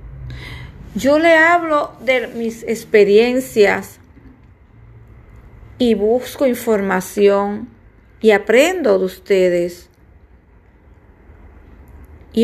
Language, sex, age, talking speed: Spanish, female, 30-49, 70 wpm